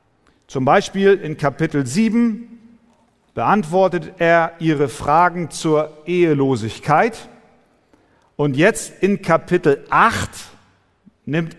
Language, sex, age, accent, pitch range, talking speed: German, male, 50-69, German, 140-200 Hz, 90 wpm